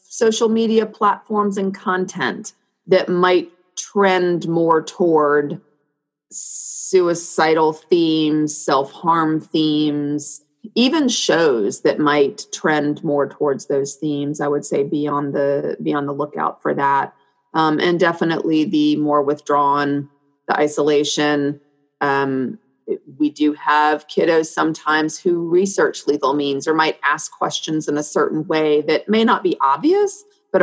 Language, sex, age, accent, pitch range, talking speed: English, female, 30-49, American, 145-185 Hz, 130 wpm